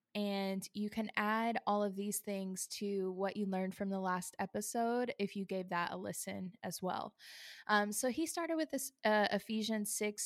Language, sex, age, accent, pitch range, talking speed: English, female, 10-29, American, 190-210 Hz, 195 wpm